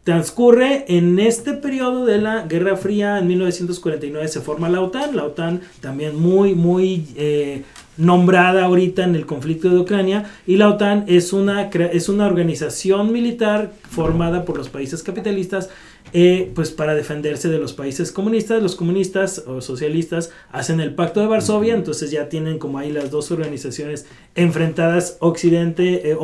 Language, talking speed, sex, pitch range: Spanish, 155 wpm, male, 150-195 Hz